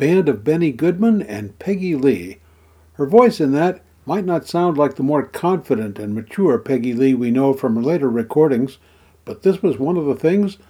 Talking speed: 190 wpm